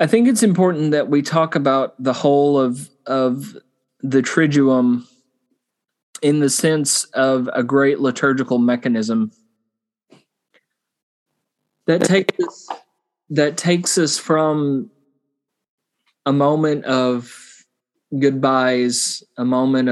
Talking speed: 105 wpm